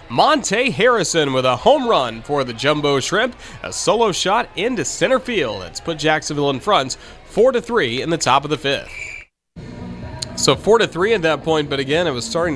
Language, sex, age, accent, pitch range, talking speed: English, male, 30-49, American, 125-170 Hz, 200 wpm